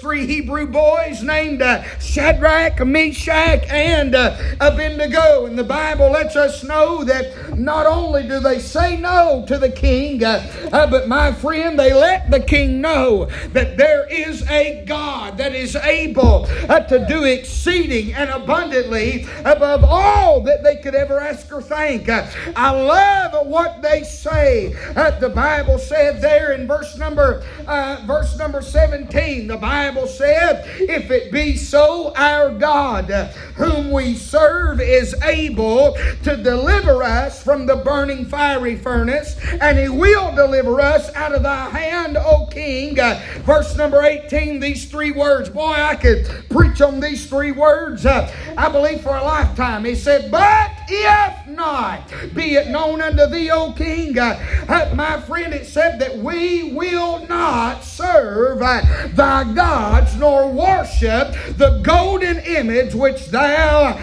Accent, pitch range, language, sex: American, 275-315 Hz, English, male